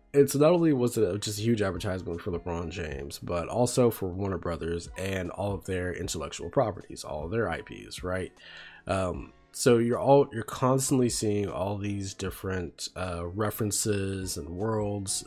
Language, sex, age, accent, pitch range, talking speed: English, male, 20-39, American, 90-120 Hz, 165 wpm